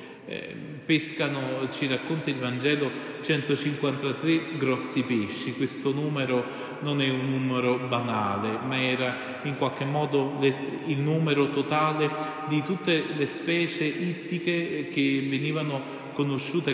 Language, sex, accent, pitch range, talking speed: Italian, male, native, 130-150 Hz, 110 wpm